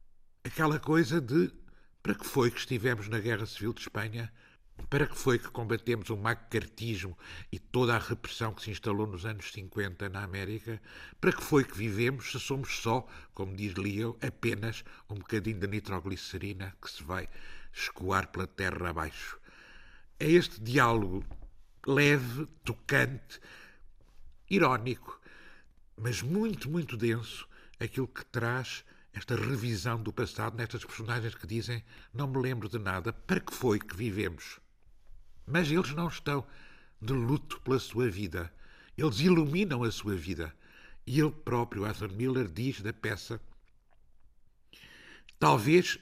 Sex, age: male, 60-79